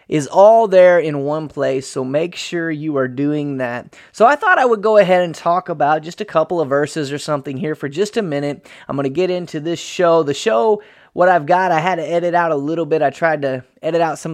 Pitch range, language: 145-175 Hz, English